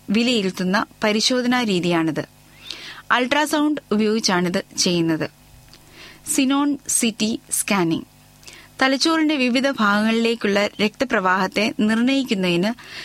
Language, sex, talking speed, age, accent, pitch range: Malayalam, female, 60 wpm, 20-39, native, 200-265 Hz